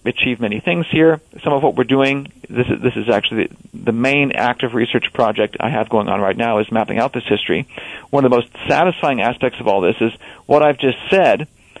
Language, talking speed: English, 220 wpm